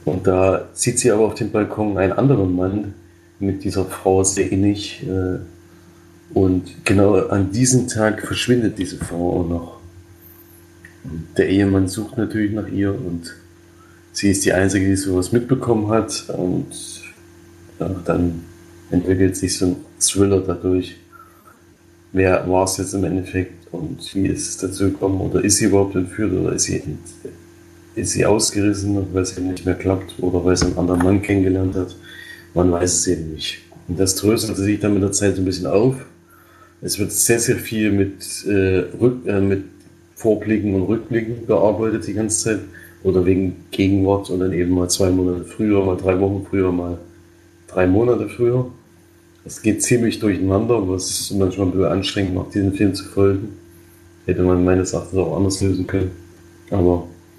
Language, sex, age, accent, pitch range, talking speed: German, male, 40-59, German, 85-100 Hz, 170 wpm